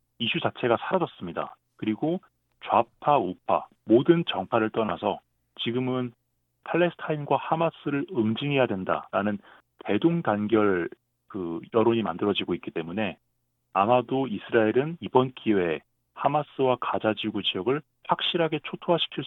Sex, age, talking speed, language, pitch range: male, 40-59, 90 wpm, English, 105-150 Hz